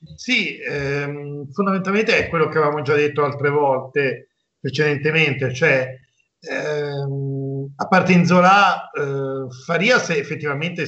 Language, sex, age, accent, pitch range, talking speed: Italian, male, 50-69, native, 130-155 Hz, 120 wpm